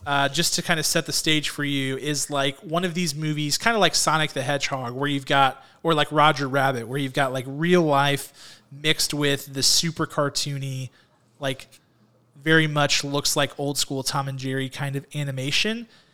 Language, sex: English, male